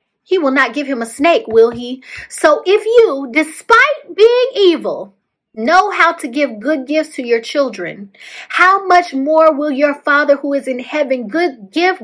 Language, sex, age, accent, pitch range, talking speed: English, female, 30-49, American, 215-300 Hz, 175 wpm